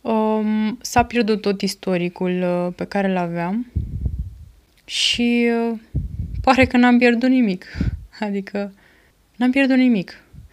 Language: Romanian